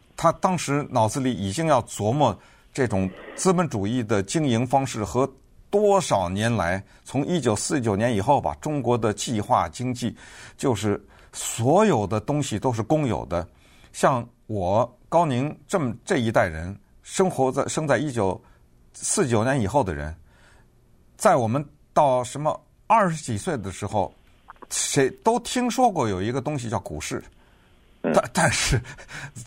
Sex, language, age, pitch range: male, Chinese, 50-69, 110-165 Hz